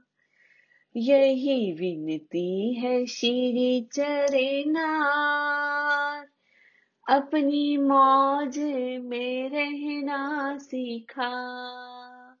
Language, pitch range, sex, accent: Hindi, 180-255 Hz, female, native